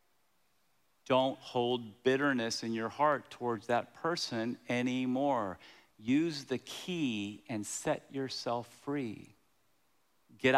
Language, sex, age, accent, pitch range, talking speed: English, male, 40-59, American, 120-150 Hz, 100 wpm